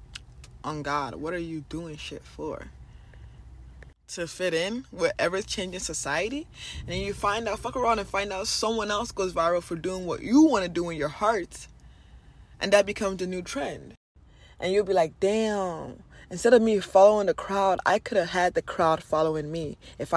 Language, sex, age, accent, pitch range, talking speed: English, female, 20-39, American, 150-200 Hz, 190 wpm